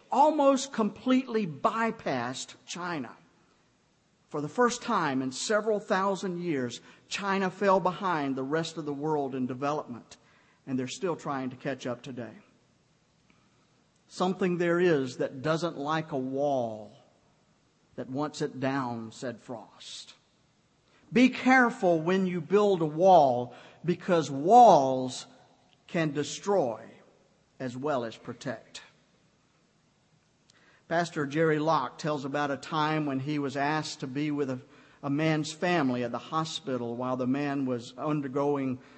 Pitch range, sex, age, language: 140-175 Hz, male, 50-69, English